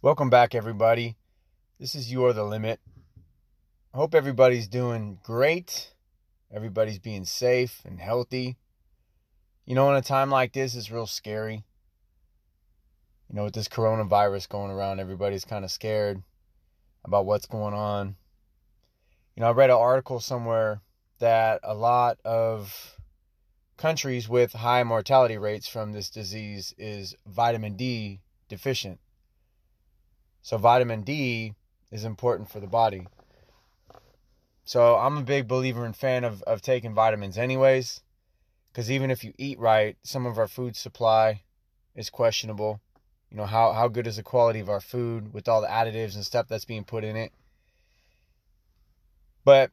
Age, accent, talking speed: 20-39, American, 150 wpm